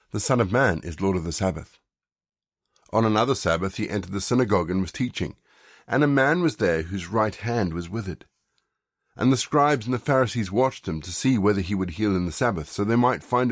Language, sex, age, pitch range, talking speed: English, male, 50-69, 95-125 Hz, 220 wpm